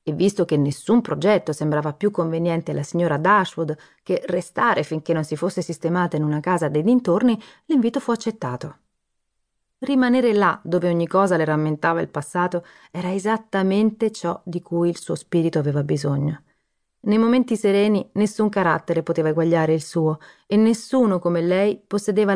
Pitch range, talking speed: 165-230 Hz, 160 wpm